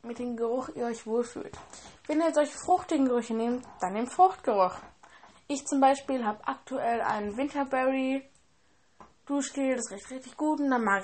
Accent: German